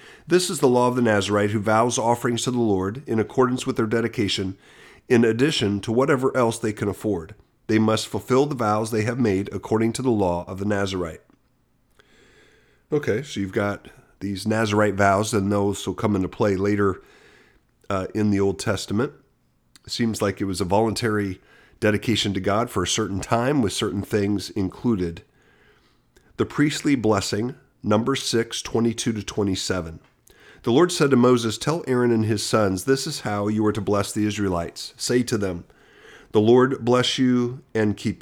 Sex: male